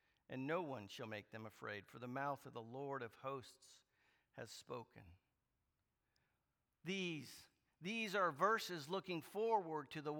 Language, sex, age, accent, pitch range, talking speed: English, male, 50-69, American, 150-220 Hz, 145 wpm